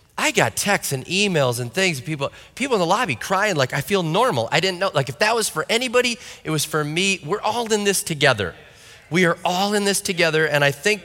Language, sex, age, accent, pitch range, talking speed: English, male, 30-49, American, 130-175 Hz, 240 wpm